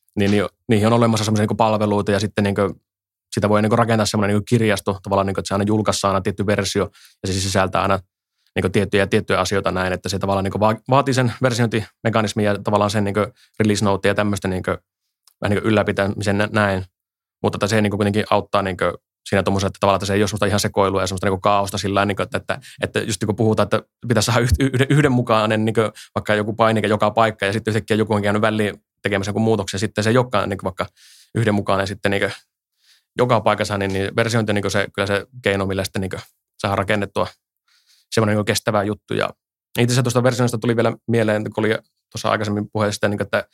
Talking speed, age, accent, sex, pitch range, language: 165 wpm, 20-39, native, male, 100-110 Hz, Finnish